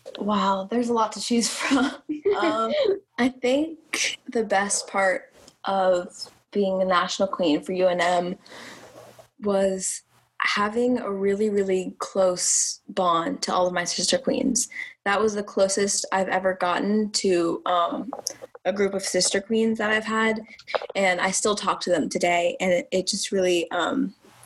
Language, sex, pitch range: English, female, 180-220 Hz